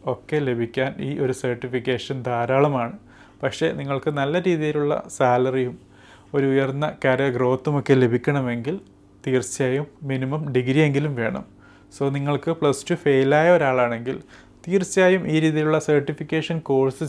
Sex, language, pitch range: male, Malayalam, 130-155 Hz